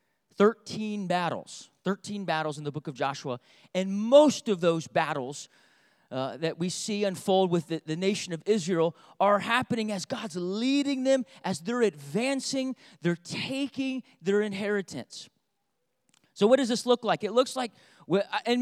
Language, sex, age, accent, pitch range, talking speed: English, male, 30-49, American, 180-240 Hz, 155 wpm